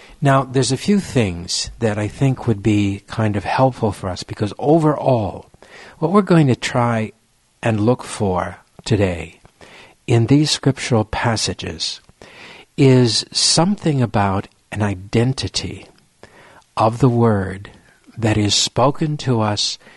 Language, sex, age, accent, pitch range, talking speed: English, male, 60-79, American, 105-130 Hz, 130 wpm